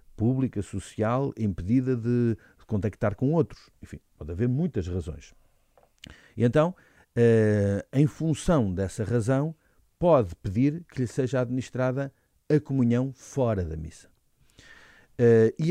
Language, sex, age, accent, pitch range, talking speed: Portuguese, male, 50-69, Portuguese, 100-130 Hz, 115 wpm